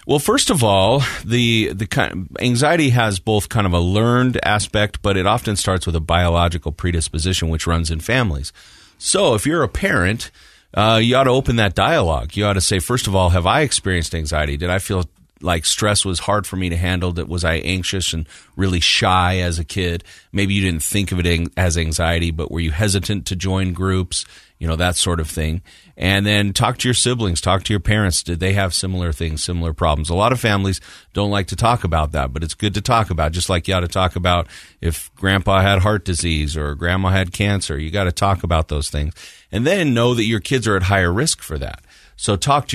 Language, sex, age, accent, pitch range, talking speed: English, male, 40-59, American, 85-100 Hz, 230 wpm